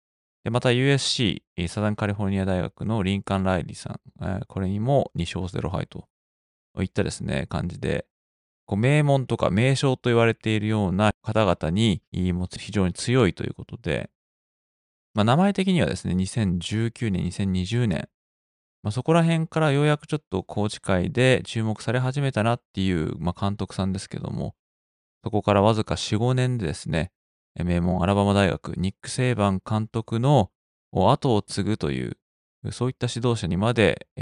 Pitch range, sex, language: 95-130 Hz, male, Japanese